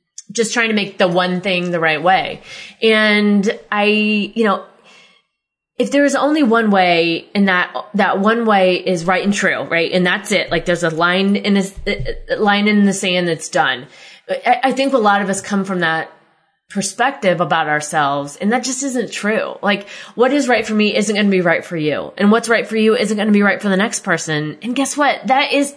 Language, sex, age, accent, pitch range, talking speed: English, female, 20-39, American, 180-225 Hz, 225 wpm